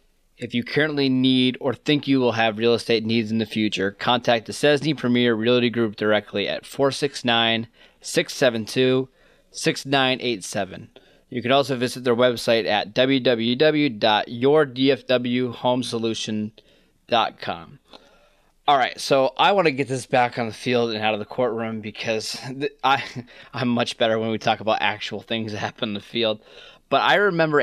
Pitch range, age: 115-135 Hz, 20-39